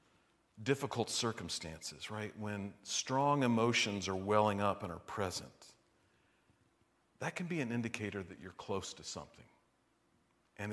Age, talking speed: 50-69, 130 wpm